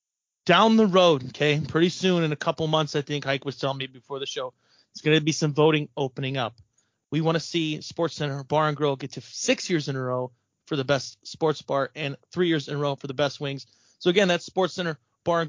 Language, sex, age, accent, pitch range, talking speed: English, male, 30-49, American, 145-175 Hz, 250 wpm